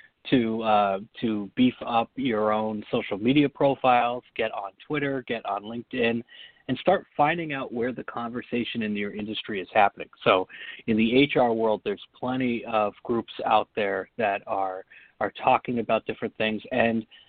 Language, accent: English, American